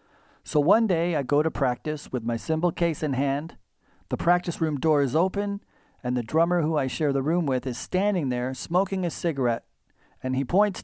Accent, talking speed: American, 205 wpm